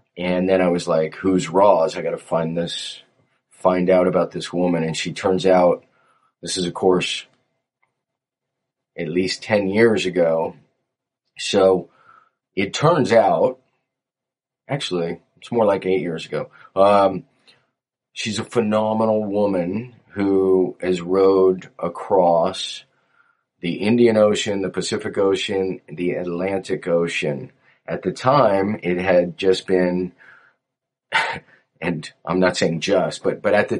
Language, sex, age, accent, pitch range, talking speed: English, male, 30-49, American, 90-110 Hz, 130 wpm